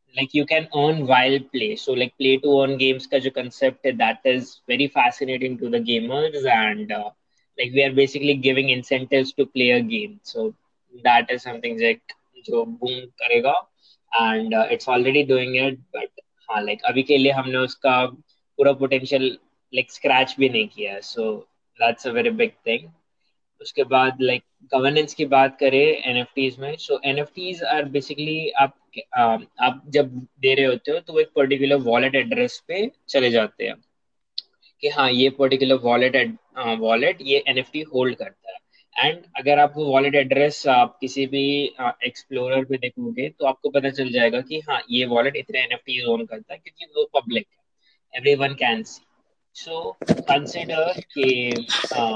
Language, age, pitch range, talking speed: Hindi, 20-39, 125-150 Hz, 85 wpm